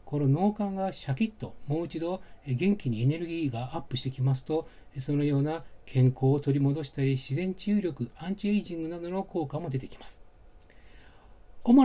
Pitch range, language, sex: 130-175 Hz, Japanese, male